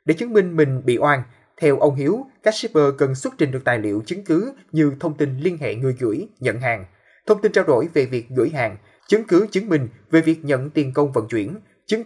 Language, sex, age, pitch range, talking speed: Vietnamese, male, 20-39, 125-165 Hz, 240 wpm